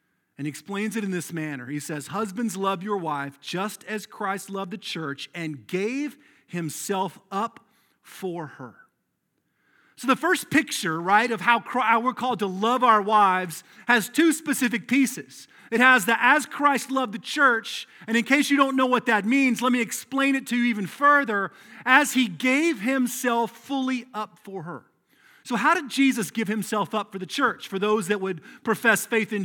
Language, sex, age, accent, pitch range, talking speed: English, male, 40-59, American, 195-260 Hz, 185 wpm